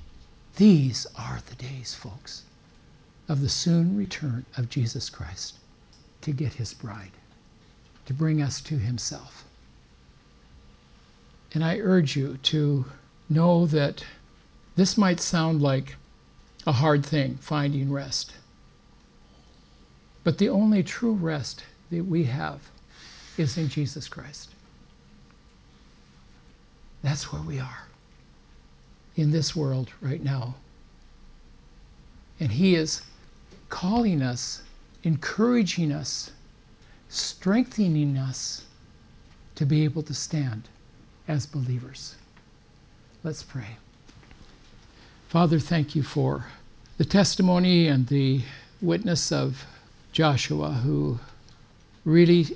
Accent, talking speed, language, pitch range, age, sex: American, 100 wpm, English, 115-155 Hz, 60-79, male